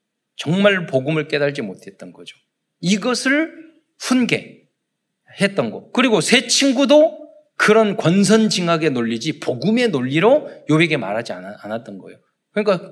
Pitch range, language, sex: 150-220 Hz, Korean, male